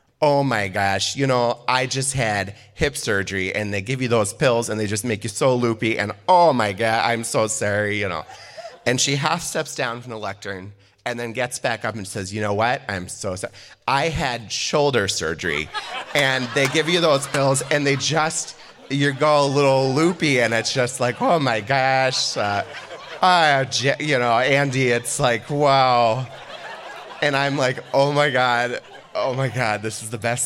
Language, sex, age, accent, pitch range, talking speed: English, male, 30-49, American, 110-140 Hz, 195 wpm